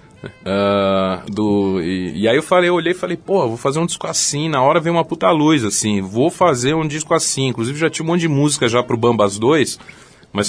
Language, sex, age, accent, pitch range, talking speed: Portuguese, male, 40-59, Brazilian, 120-160 Hz, 235 wpm